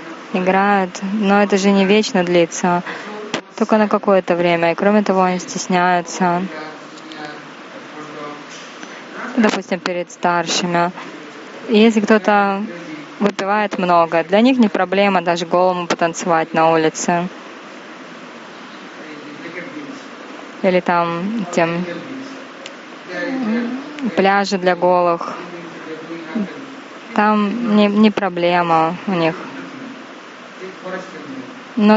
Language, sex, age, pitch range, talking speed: Russian, female, 20-39, 175-215 Hz, 85 wpm